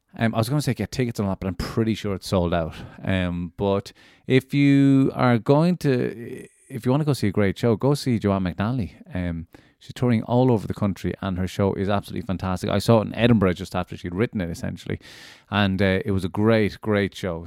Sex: male